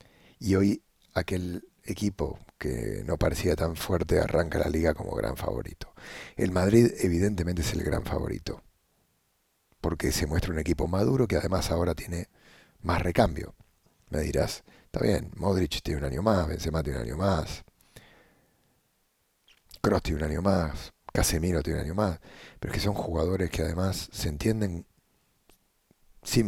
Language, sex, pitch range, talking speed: English, male, 80-95 Hz, 155 wpm